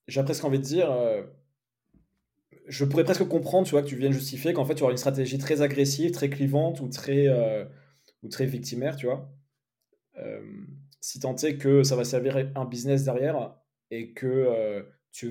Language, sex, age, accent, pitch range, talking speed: French, male, 20-39, French, 125-145 Hz, 195 wpm